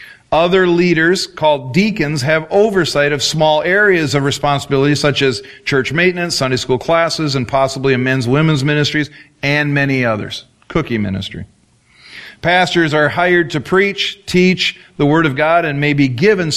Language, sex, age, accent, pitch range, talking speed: English, male, 40-59, American, 140-165 Hz, 155 wpm